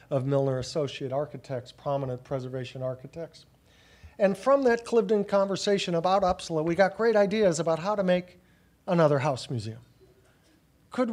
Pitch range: 150-205 Hz